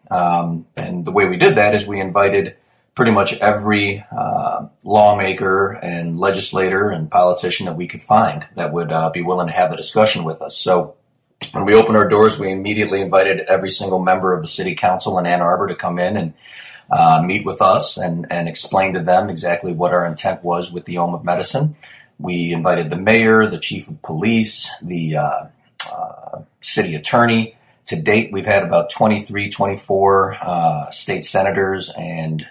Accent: American